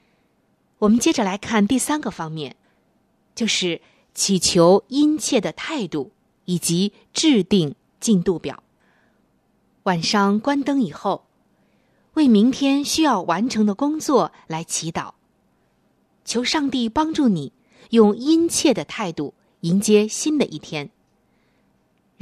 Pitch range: 175-275 Hz